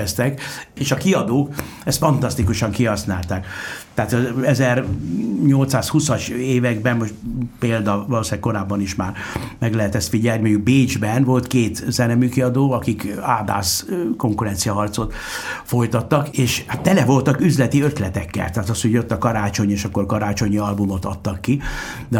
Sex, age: male, 60-79